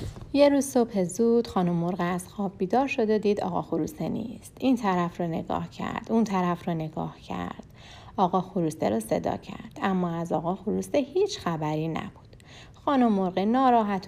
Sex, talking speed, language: female, 170 wpm, Persian